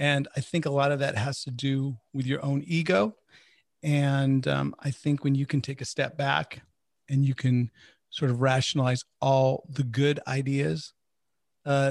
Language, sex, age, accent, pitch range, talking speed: English, male, 40-59, American, 130-145 Hz, 180 wpm